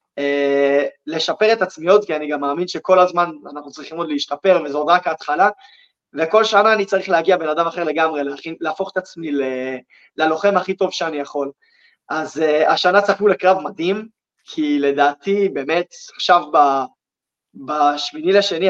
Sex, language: male, Hebrew